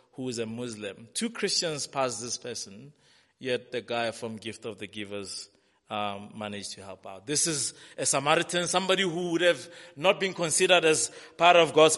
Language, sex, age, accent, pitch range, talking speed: English, male, 20-39, South African, 130-170 Hz, 185 wpm